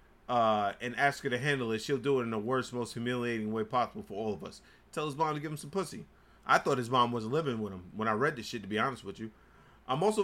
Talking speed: 285 wpm